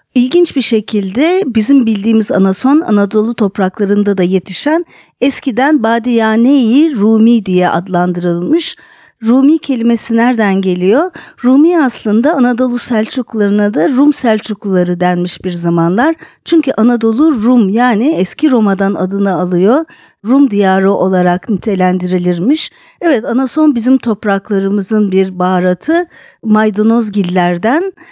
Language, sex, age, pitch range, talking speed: Turkish, female, 50-69, 195-275 Hz, 100 wpm